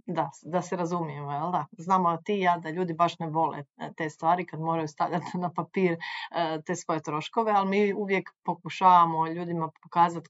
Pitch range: 165-185 Hz